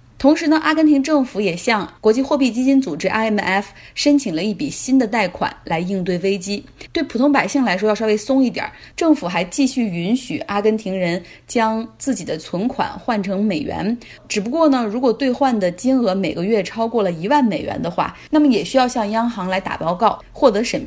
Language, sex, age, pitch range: Chinese, female, 20-39, 195-270 Hz